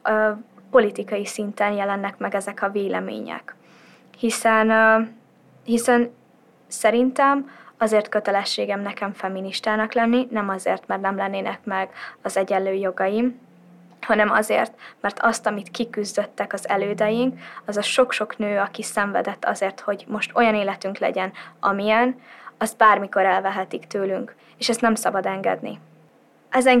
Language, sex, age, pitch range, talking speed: Hungarian, female, 20-39, 200-230 Hz, 125 wpm